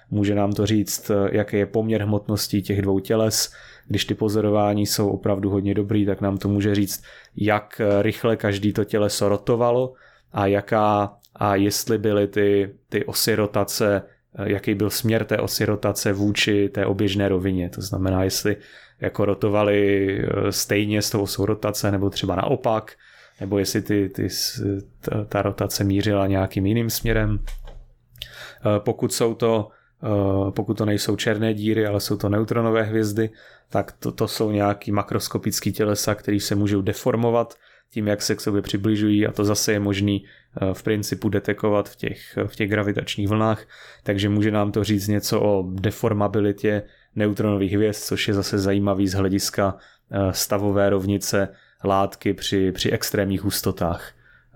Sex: male